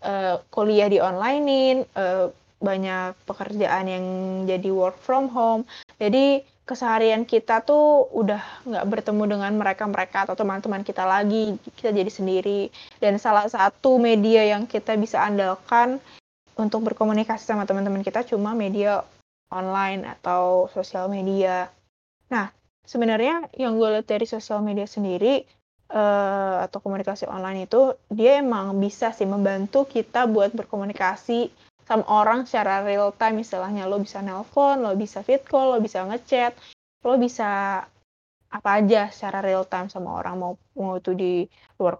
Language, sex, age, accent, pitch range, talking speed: Indonesian, female, 10-29, native, 195-225 Hz, 140 wpm